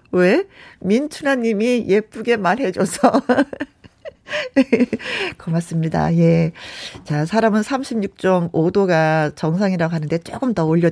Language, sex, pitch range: Korean, female, 175-280 Hz